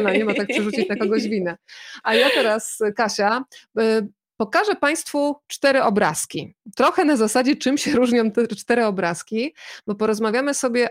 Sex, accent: female, native